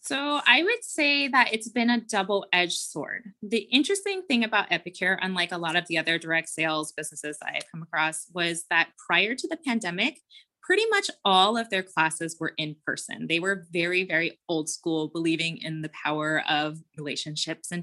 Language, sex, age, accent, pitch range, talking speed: English, female, 20-39, American, 160-215 Hz, 185 wpm